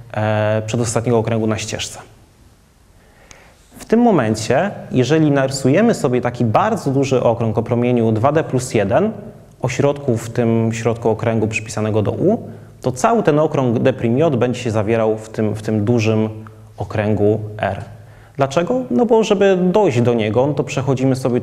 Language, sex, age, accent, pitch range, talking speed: Polish, male, 30-49, native, 110-130 Hz, 150 wpm